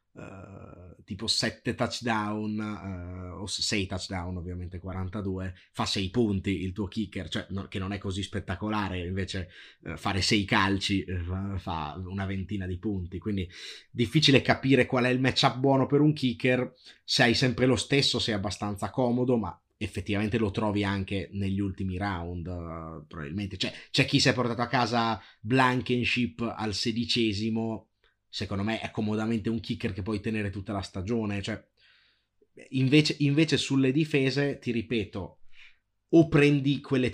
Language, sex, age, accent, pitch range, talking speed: Italian, male, 30-49, native, 100-125 Hz, 150 wpm